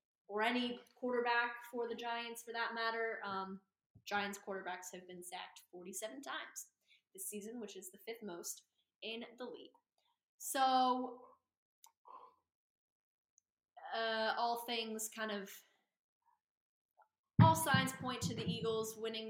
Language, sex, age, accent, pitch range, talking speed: English, female, 10-29, American, 190-230 Hz, 125 wpm